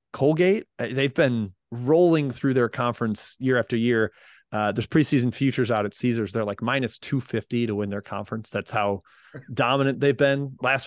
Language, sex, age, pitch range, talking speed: English, male, 30-49, 115-140 Hz, 170 wpm